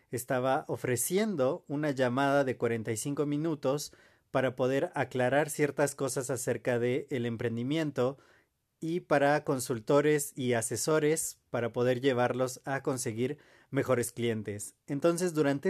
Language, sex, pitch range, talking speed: Spanish, male, 125-150 Hz, 115 wpm